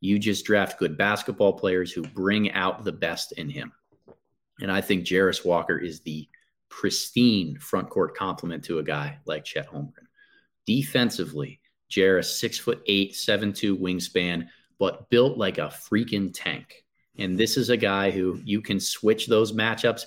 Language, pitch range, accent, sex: English, 90-110 Hz, American, male